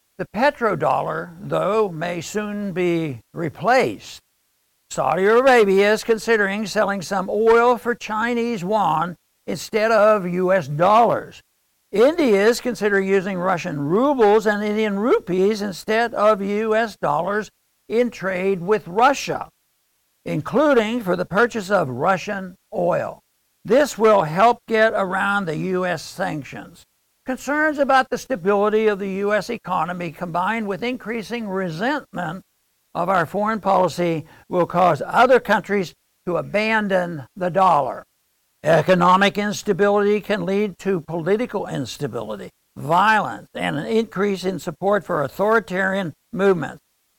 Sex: male